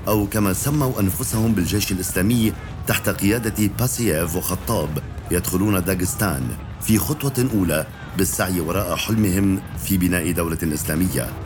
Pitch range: 90-110 Hz